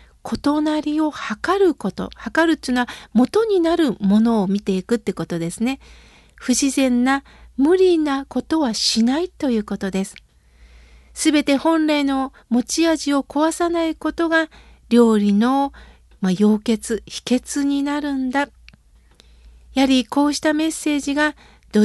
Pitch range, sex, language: 215-295 Hz, female, Japanese